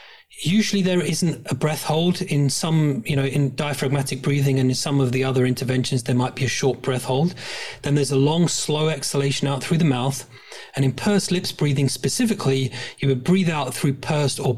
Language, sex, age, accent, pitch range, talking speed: English, male, 30-49, British, 130-160 Hz, 205 wpm